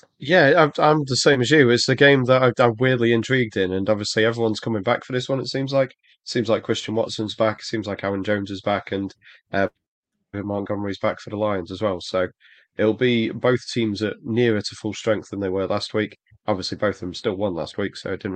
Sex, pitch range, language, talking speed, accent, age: male, 95-120 Hz, English, 240 wpm, British, 20-39